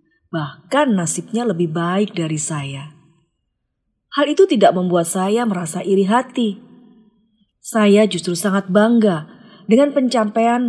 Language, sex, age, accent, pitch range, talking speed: Indonesian, female, 30-49, native, 170-230 Hz, 110 wpm